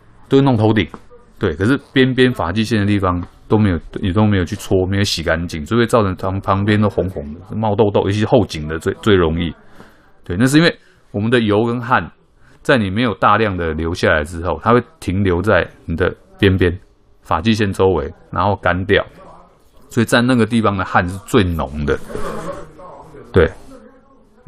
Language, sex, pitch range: Chinese, male, 85-115 Hz